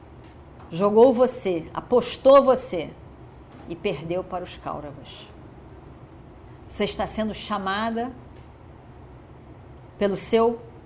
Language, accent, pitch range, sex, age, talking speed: Portuguese, Brazilian, 170-260 Hz, female, 40-59, 85 wpm